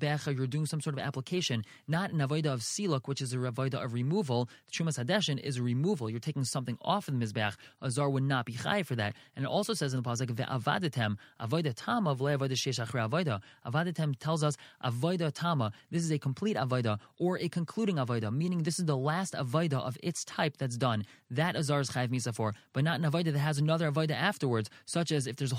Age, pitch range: 20-39, 135-170 Hz